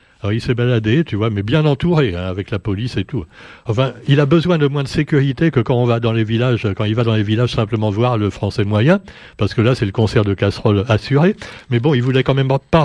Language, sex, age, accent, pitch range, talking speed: French, male, 60-79, French, 115-150 Hz, 265 wpm